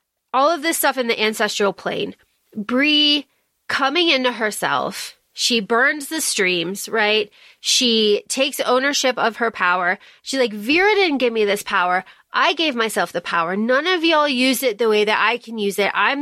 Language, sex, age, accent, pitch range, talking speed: English, female, 30-49, American, 210-270 Hz, 180 wpm